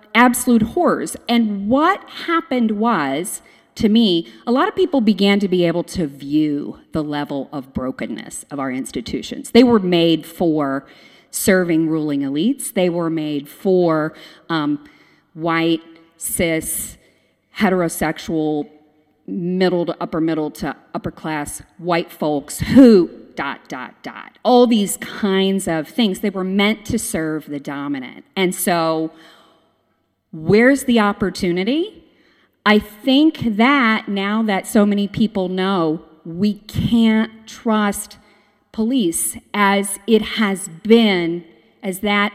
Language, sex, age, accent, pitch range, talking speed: English, female, 40-59, American, 165-230 Hz, 125 wpm